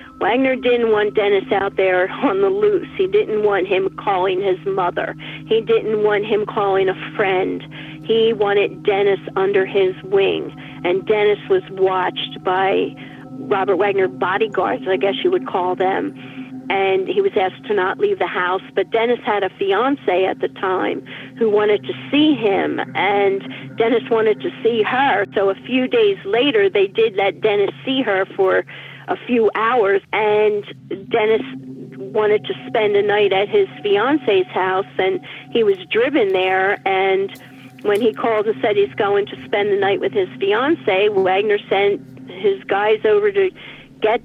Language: English